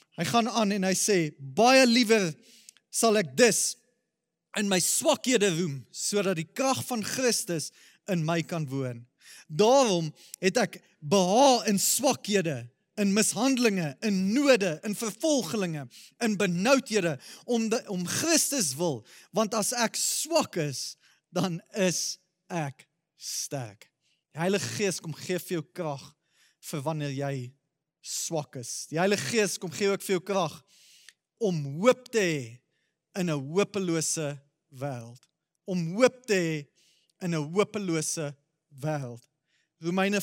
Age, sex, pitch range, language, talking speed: 30-49, male, 160-230 Hz, English, 130 wpm